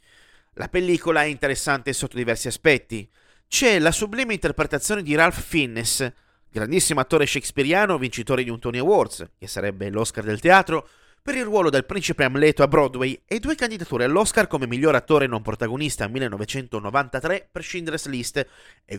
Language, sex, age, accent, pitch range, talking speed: Italian, male, 30-49, native, 120-165 Hz, 160 wpm